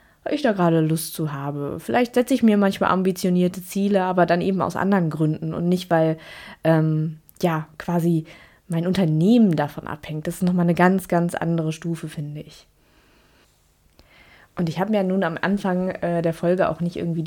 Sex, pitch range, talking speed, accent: female, 160-195 Hz, 190 wpm, German